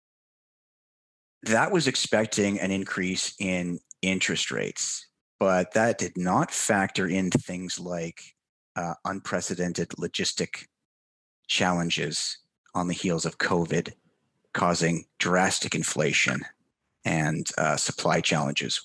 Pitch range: 85-95 Hz